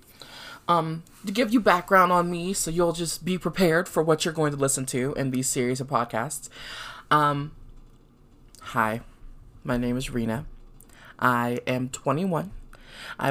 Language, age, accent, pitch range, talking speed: English, 20-39, American, 120-150 Hz, 155 wpm